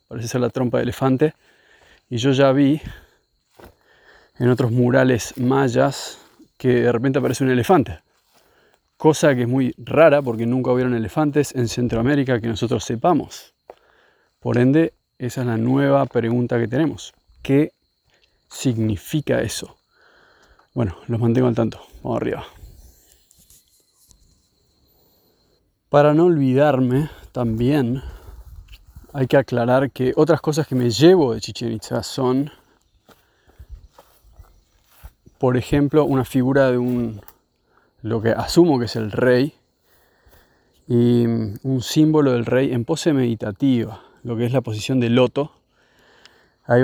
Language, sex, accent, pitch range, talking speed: Spanish, male, Argentinian, 115-140 Hz, 125 wpm